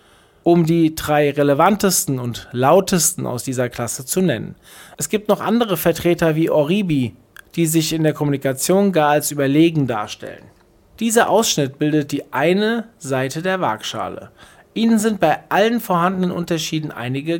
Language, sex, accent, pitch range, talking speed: German, male, German, 140-190 Hz, 145 wpm